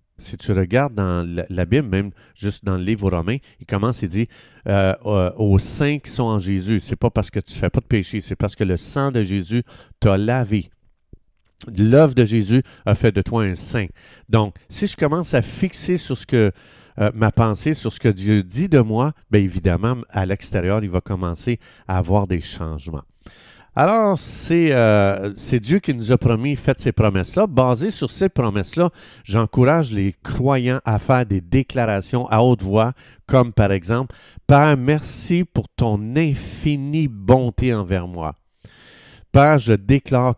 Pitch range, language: 105-135 Hz, French